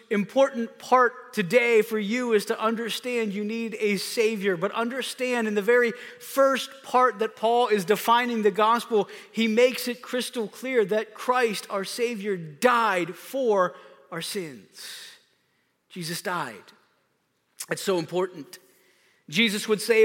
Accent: American